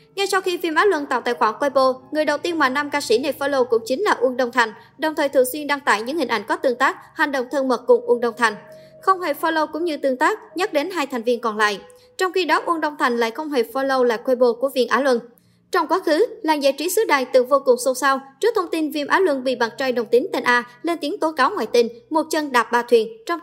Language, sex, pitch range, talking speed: Vietnamese, male, 245-335 Hz, 290 wpm